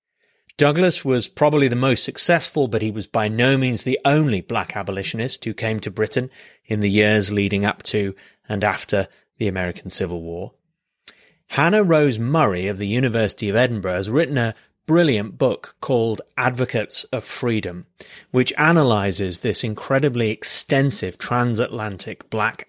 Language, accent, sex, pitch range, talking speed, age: English, British, male, 105-135 Hz, 150 wpm, 30-49